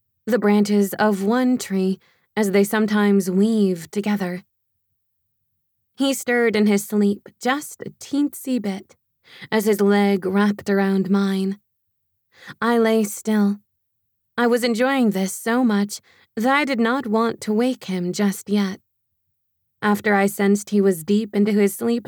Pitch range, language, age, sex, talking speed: 195-230 Hz, English, 20-39, female, 145 wpm